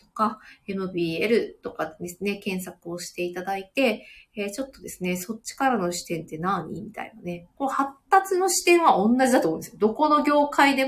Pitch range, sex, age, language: 180-260 Hz, female, 20-39, Japanese